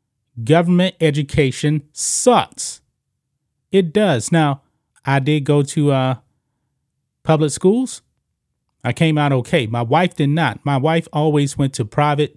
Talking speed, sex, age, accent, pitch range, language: 130 wpm, male, 30-49, American, 125-165 Hz, English